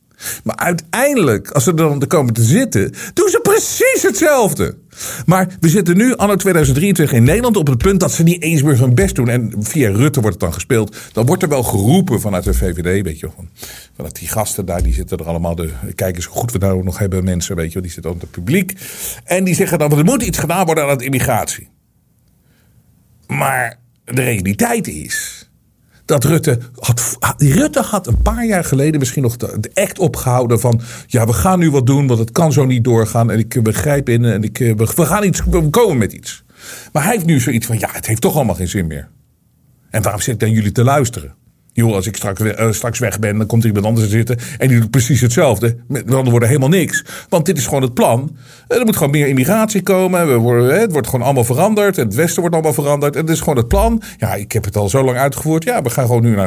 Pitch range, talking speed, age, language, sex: 115-175 Hz, 230 wpm, 50-69, Dutch, male